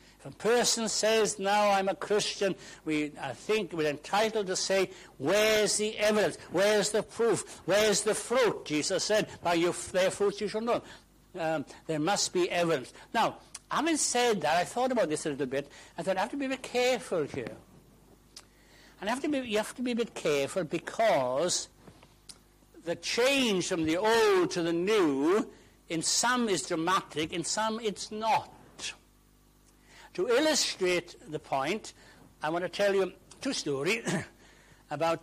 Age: 60-79